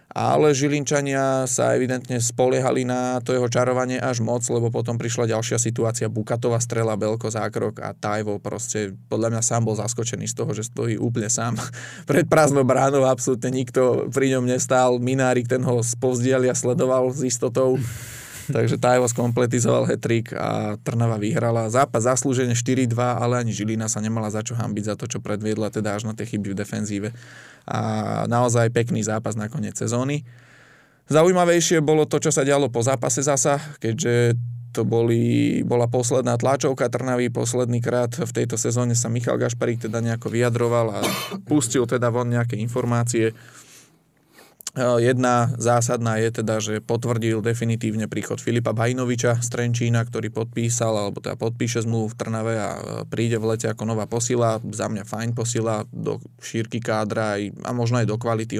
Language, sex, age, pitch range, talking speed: Slovak, male, 20-39, 110-125 Hz, 160 wpm